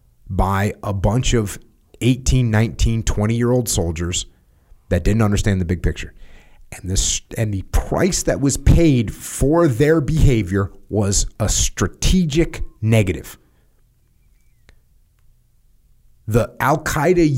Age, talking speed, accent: 30-49, 105 wpm, American